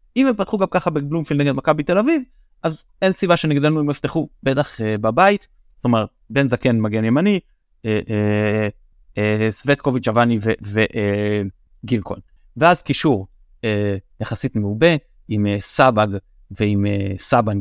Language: Hebrew